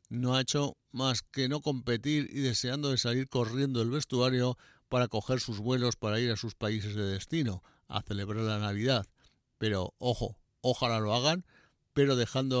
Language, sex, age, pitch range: Spanish, male, 60-79, 110-135 Hz